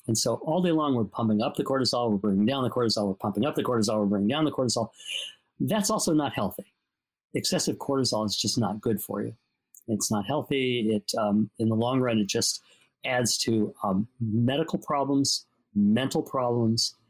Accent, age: American, 50-69